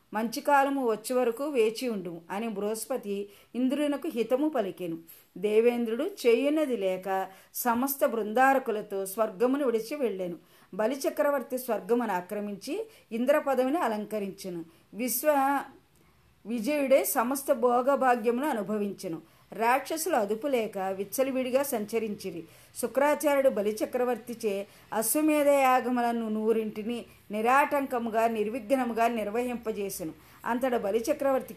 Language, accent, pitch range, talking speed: Telugu, native, 210-270 Hz, 85 wpm